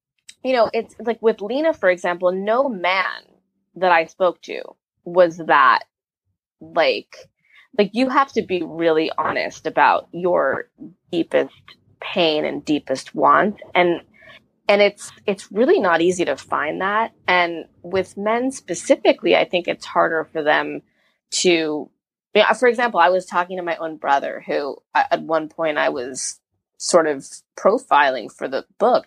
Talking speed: 150 wpm